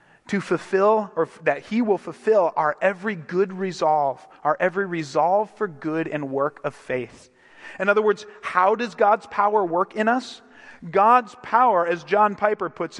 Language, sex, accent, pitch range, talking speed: English, male, American, 165-210 Hz, 165 wpm